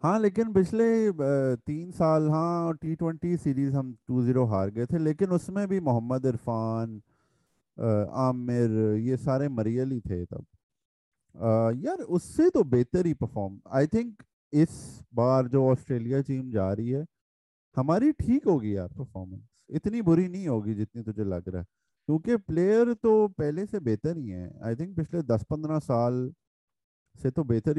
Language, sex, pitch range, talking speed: Urdu, male, 110-155 Hz, 155 wpm